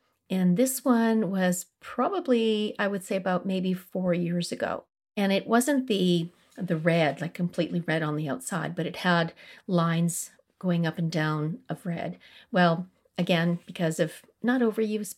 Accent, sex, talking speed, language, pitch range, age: American, female, 160 wpm, English, 170-215 Hz, 40-59